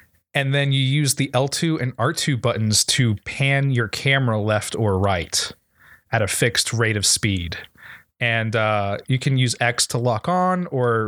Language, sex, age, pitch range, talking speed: English, male, 20-39, 110-145 Hz, 175 wpm